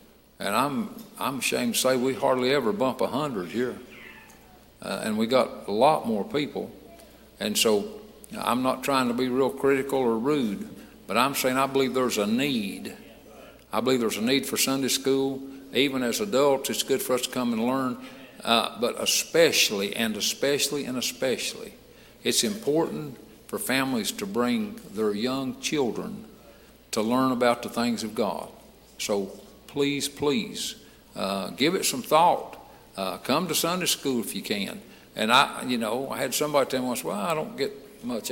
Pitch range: 125-205 Hz